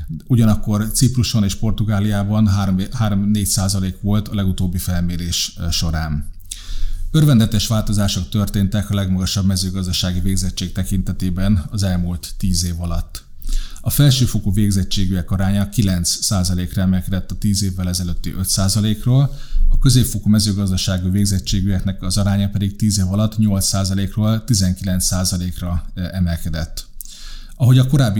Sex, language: male, Hungarian